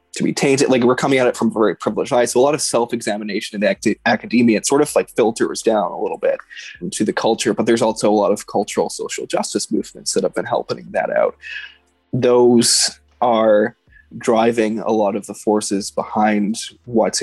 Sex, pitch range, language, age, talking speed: male, 110-135 Hz, English, 20-39, 210 wpm